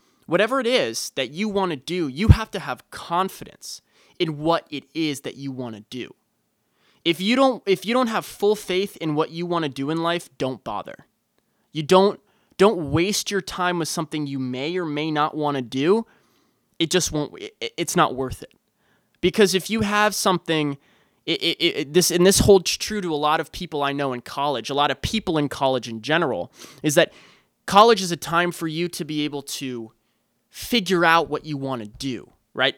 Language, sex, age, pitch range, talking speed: English, male, 20-39, 140-190 Hz, 210 wpm